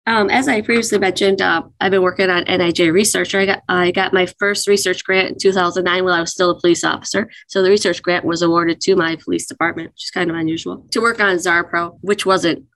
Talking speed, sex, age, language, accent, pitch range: 230 wpm, female, 20-39, English, American, 175-200 Hz